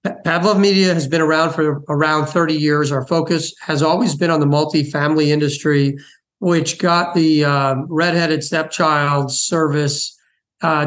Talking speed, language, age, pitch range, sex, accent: 145 wpm, English, 40-59, 140-160 Hz, male, American